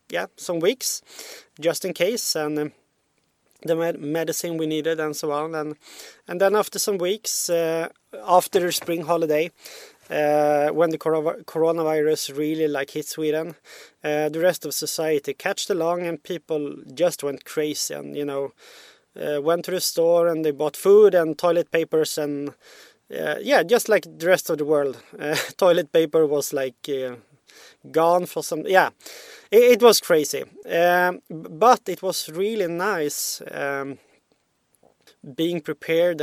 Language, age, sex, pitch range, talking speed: English, 20-39, male, 150-180 Hz, 160 wpm